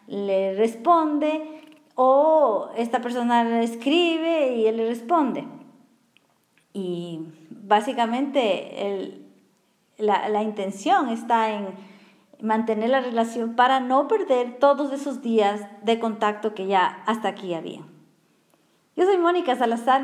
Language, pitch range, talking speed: Spanish, 210-265 Hz, 115 wpm